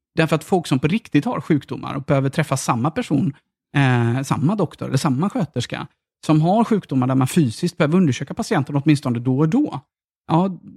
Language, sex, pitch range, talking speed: Swedish, male, 140-180 Hz, 185 wpm